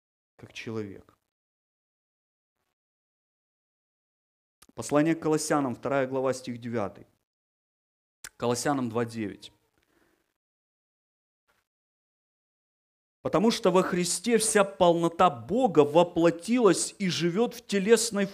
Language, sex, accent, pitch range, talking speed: Ukrainian, male, native, 145-215 Hz, 75 wpm